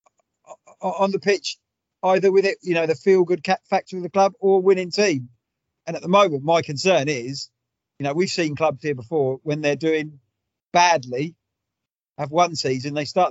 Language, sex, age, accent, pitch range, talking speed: English, male, 40-59, British, 135-175 Hz, 180 wpm